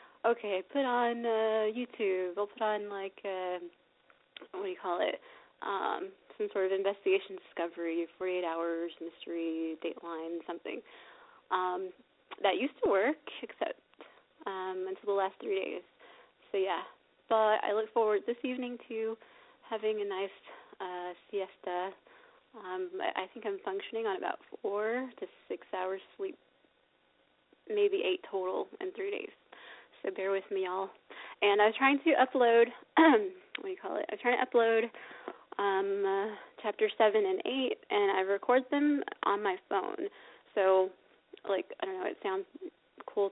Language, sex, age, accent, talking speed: English, female, 20-39, American, 155 wpm